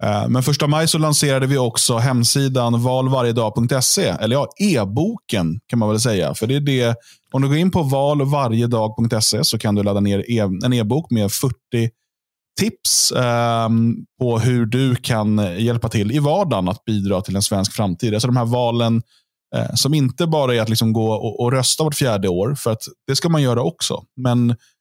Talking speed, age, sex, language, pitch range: 180 wpm, 20-39, male, Swedish, 105-130 Hz